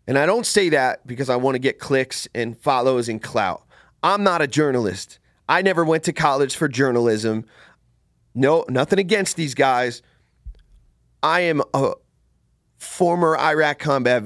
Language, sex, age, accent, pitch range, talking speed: English, male, 30-49, American, 120-155 Hz, 155 wpm